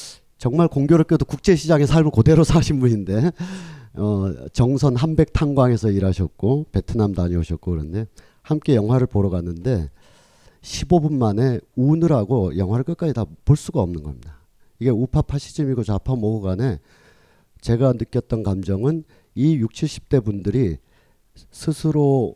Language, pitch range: Korean, 100-145 Hz